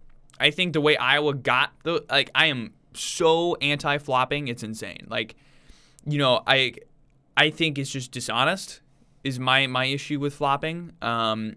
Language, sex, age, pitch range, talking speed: English, male, 20-39, 125-155 Hz, 155 wpm